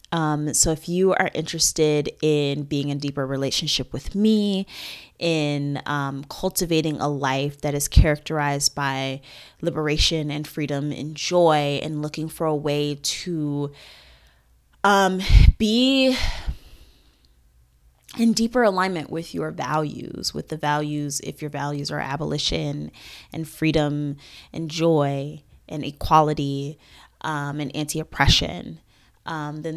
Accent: American